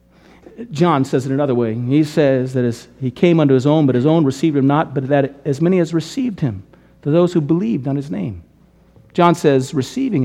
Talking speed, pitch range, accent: 215 wpm, 125-170 Hz, American